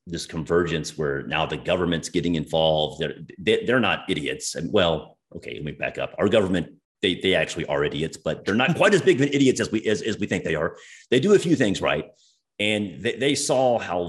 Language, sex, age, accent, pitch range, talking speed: English, male, 30-49, American, 75-95 Hz, 230 wpm